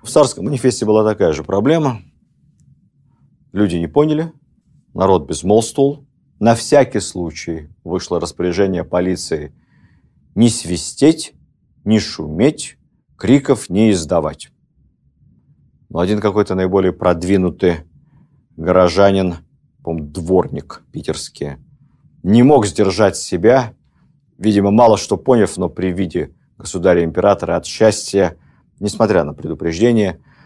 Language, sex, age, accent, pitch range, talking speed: Russian, male, 50-69, native, 85-120 Hz, 100 wpm